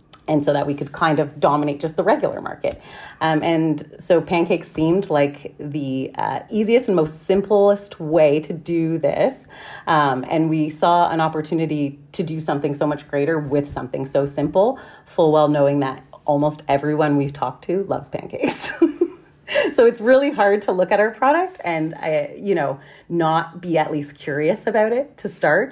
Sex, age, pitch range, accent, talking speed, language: female, 30-49, 145-175 Hz, American, 175 wpm, English